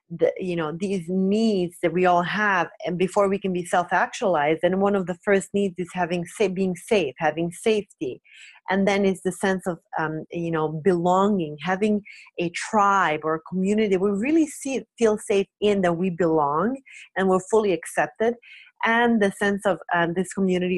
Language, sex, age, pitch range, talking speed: English, female, 30-49, 180-220 Hz, 185 wpm